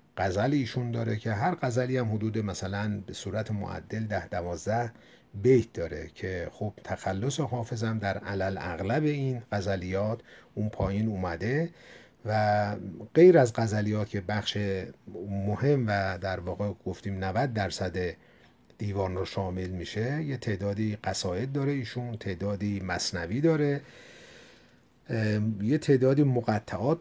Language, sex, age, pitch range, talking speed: Persian, male, 50-69, 100-125 Hz, 125 wpm